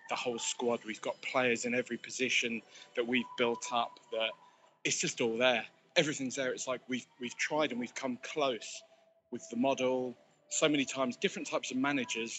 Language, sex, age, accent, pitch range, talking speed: English, male, 20-39, British, 120-150 Hz, 190 wpm